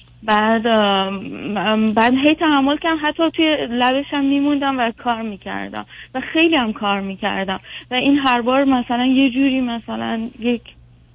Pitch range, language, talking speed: 220-265 Hz, Persian, 145 wpm